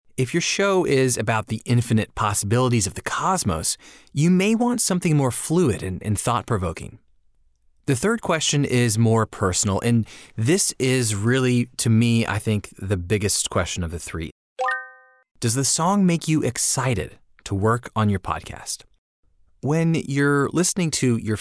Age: 30-49